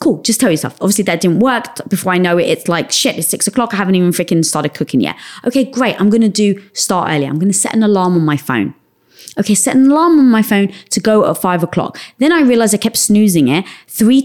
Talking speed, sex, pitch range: 255 wpm, female, 185-265 Hz